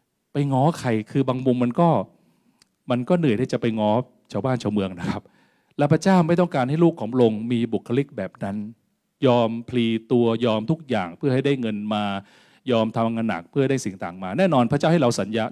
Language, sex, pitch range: Thai, male, 115-160 Hz